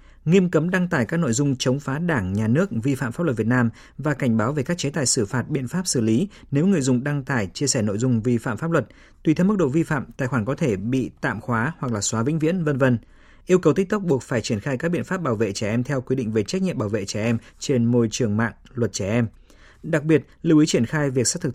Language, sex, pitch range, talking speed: Vietnamese, male, 115-155 Hz, 290 wpm